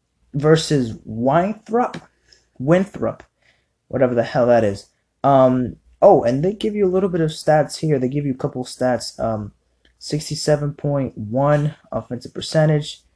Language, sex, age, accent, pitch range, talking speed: English, male, 20-39, American, 120-155 Hz, 150 wpm